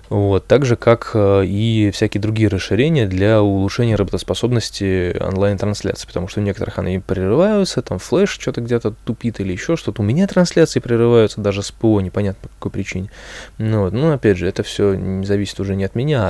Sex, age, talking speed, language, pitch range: male, 20-39, 190 wpm, Russian, 95-115 Hz